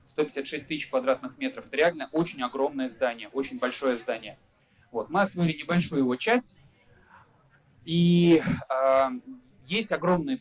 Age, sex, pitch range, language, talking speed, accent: 20-39, male, 130-175 Hz, Russian, 120 wpm, native